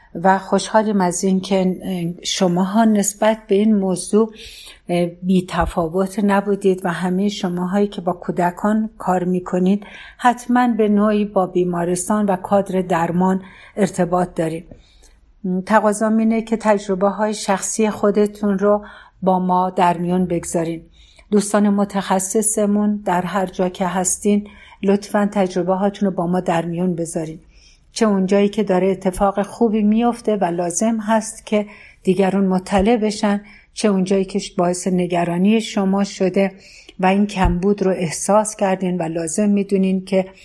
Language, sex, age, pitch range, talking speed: Persian, female, 60-79, 180-205 Hz, 135 wpm